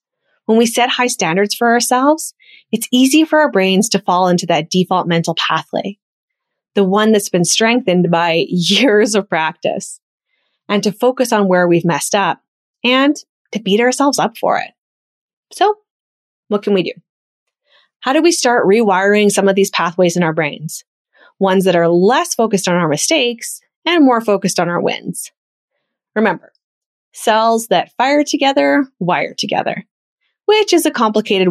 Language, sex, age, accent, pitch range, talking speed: English, female, 20-39, American, 185-270 Hz, 160 wpm